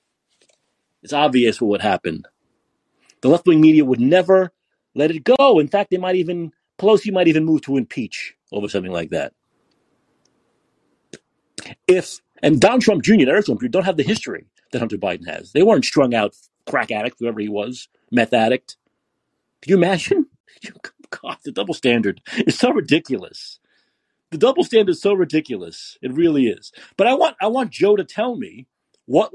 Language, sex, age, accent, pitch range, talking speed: English, male, 40-59, American, 135-190 Hz, 170 wpm